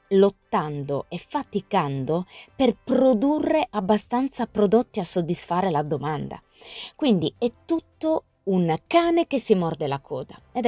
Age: 20-39